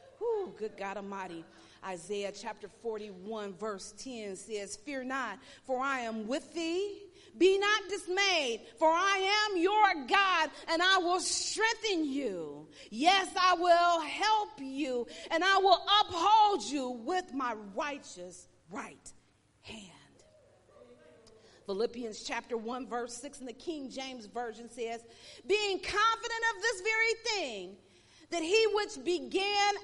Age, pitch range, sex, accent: 40-59, 215-360 Hz, female, American